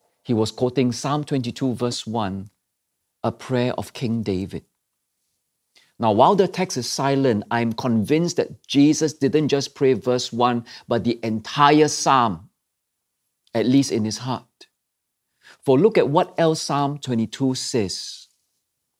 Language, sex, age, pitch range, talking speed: English, male, 50-69, 130-185 Hz, 140 wpm